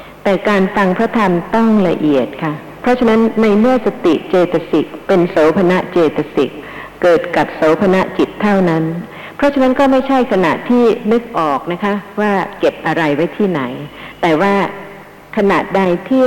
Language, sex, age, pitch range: Thai, female, 60-79, 155-200 Hz